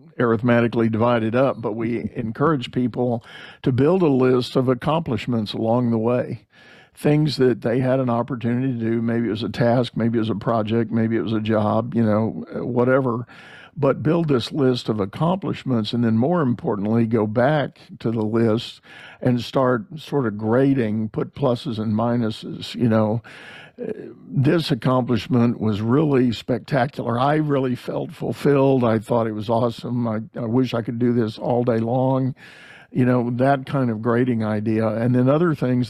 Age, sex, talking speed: 50-69, male, 170 wpm